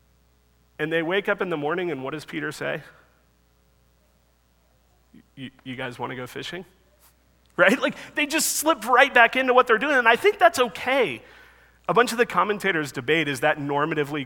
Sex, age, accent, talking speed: male, 40-59, American, 180 wpm